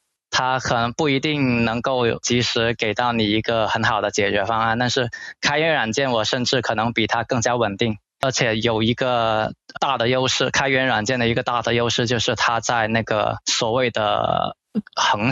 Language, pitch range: Chinese, 110-130 Hz